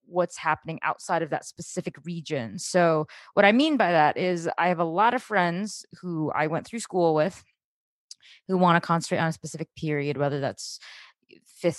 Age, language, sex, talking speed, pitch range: 20-39, English, female, 190 wpm, 160-195 Hz